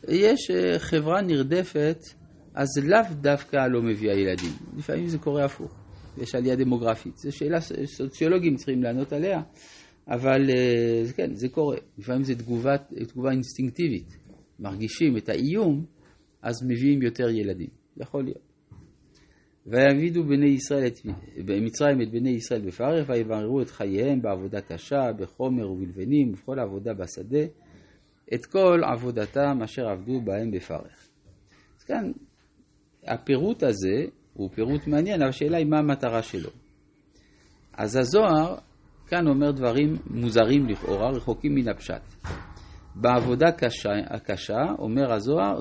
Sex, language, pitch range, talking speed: male, Hebrew, 110-145 Hz, 120 wpm